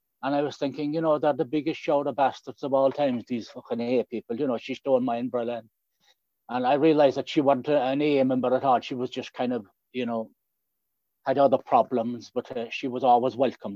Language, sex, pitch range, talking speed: English, male, 120-165 Hz, 225 wpm